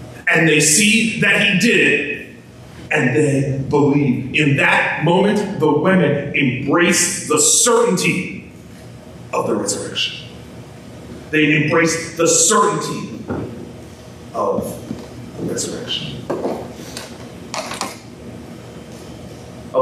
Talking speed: 90 wpm